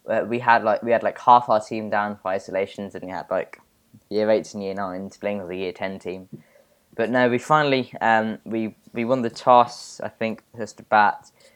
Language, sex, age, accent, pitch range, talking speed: English, male, 10-29, British, 100-125 Hz, 225 wpm